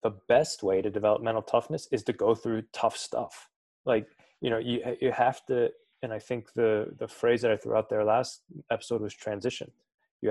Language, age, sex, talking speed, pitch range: English, 20-39, male, 210 wpm, 110-125 Hz